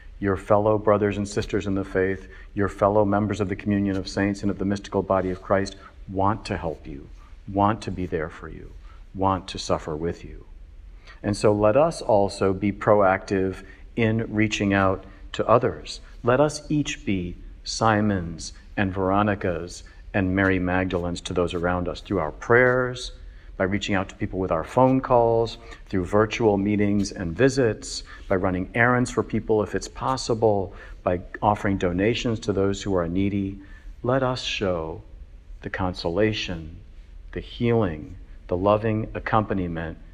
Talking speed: 160 wpm